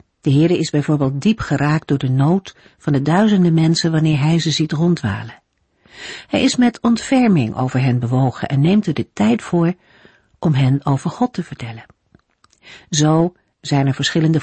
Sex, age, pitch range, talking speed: female, 50-69, 140-190 Hz, 170 wpm